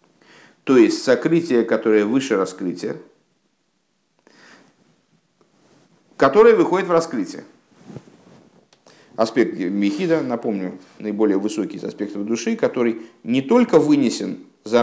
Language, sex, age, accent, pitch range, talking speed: Russian, male, 50-69, native, 120-170 Hz, 95 wpm